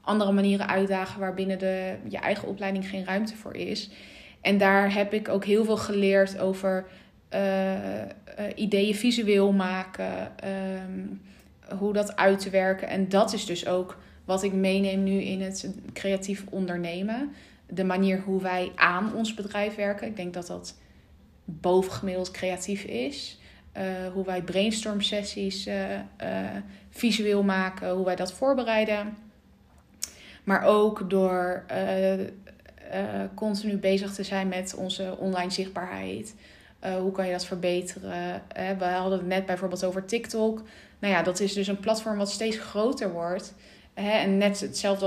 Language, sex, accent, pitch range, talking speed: Dutch, female, Dutch, 185-205 Hz, 150 wpm